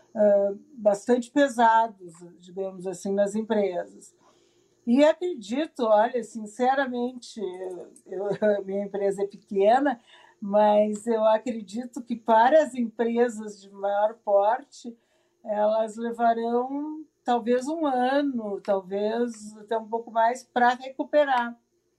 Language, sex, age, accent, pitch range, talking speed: Portuguese, female, 50-69, Brazilian, 210-255 Hz, 100 wpm